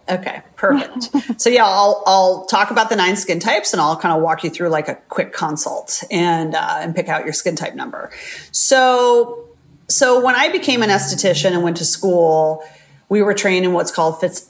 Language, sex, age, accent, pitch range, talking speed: English, female, 30-49, American, 165-195 Hz, 205 wpm